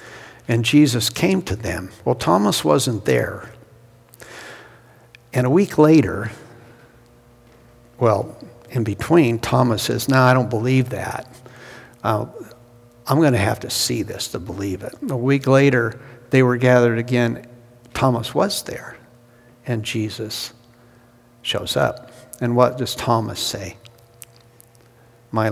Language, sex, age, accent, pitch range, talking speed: English, male, 70-89, American, 110-125 Hz, 125 wpm